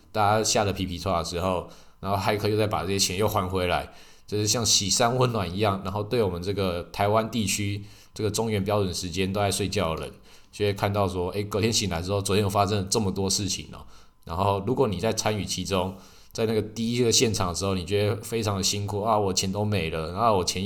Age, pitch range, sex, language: 20-39, 95-110 Hz, male, Chinese